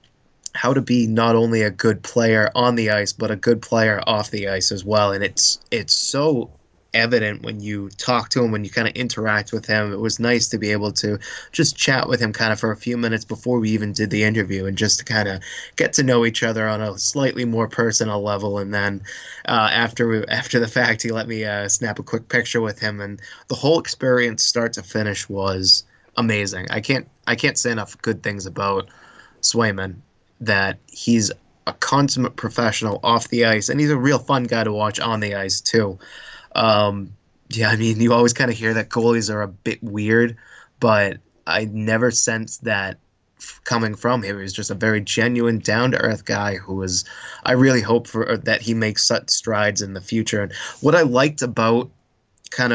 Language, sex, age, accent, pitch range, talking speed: English, male, 20-39, American, 105-120 Hz, 215 wpm